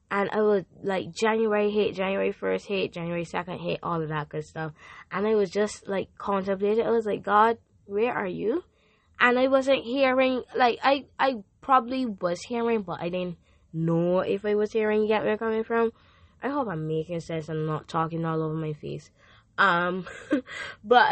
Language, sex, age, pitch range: Japanese, female, 10-29, 165-210 Hz